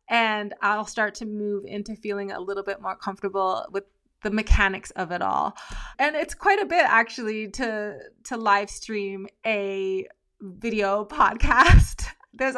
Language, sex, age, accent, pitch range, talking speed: English, female, 20-39, American, 205-240 Hz, 155 wpm